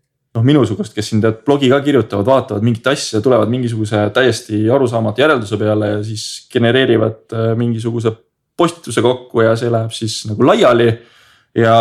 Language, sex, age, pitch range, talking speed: English, male, 20-39, 110-125 Hz, 150 wpm